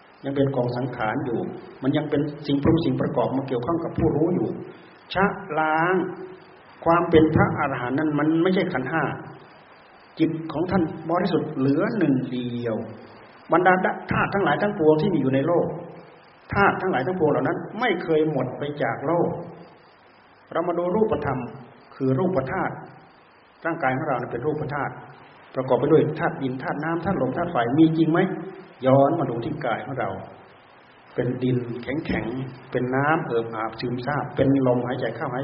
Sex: male